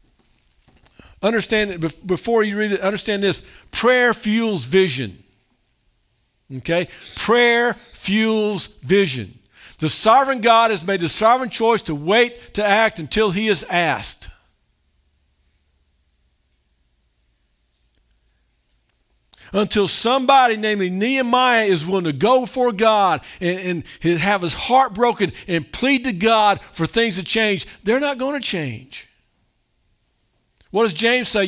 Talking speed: 120 wpm